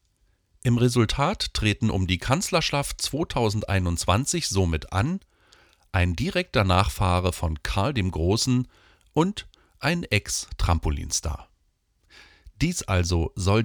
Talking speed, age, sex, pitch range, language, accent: 100 wpm, 40-59, male, 90-120 Hz, German, German